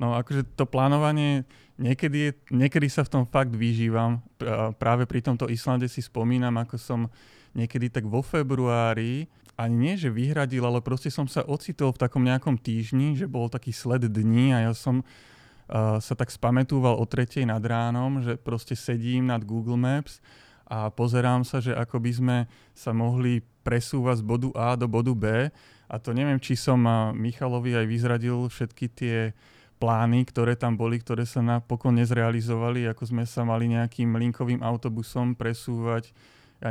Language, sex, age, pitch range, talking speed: Slovak, male, 30-49, 115-130 Hz, 165 wpm